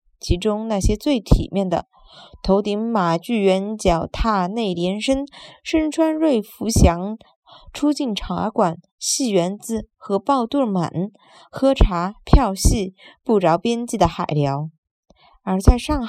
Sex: female